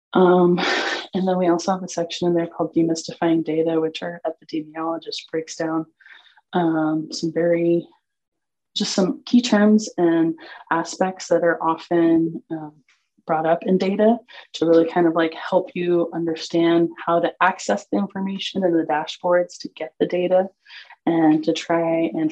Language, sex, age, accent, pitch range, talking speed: English, female, 20-39, American, 160-185 Hz, 160 wpm